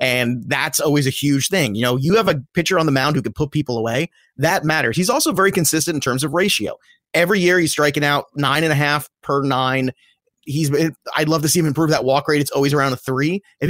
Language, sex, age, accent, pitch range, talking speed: English, male, 30-49, American, 135-175 Hz, 250 wpm